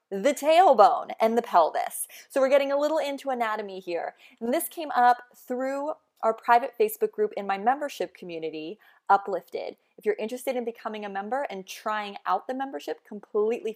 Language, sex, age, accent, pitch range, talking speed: English, female, 20-39, American, 185-260 Hz, 175 wpm